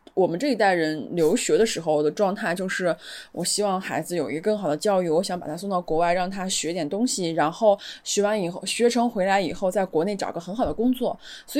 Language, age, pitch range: Chinese, 20-39, 185-255 Hz